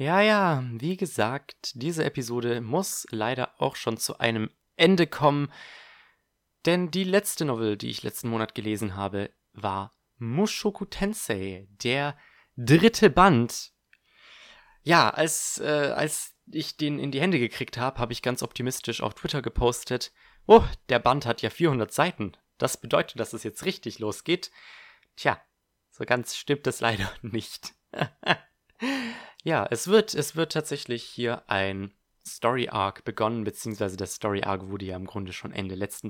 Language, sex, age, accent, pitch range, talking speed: German, male, 30-49, German, 110-150 Hz, 150 wpm